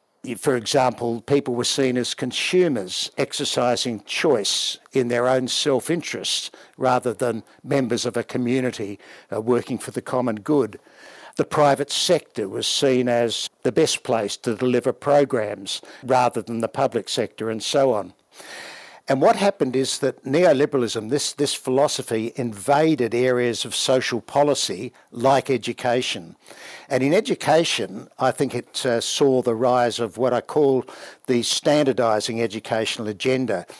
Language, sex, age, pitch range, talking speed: English, male, 60-79, 120-135 Hz, 140 wpm